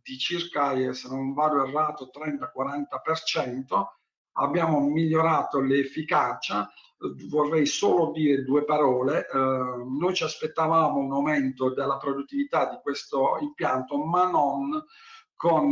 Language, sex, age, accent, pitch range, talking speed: Italian, male, 50-69, native, 140-165 Hz, 105 wpm